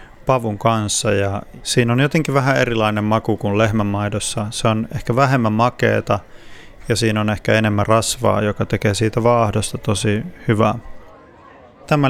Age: 30-49